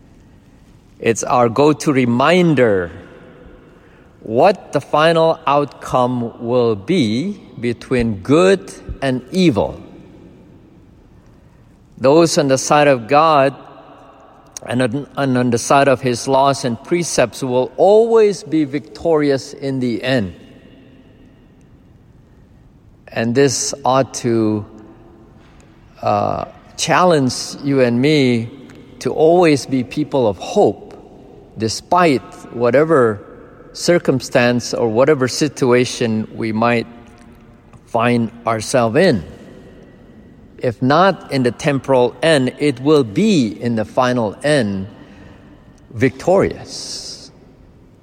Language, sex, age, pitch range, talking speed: English, male, 50-69, 120-145 Hz, 95 wpm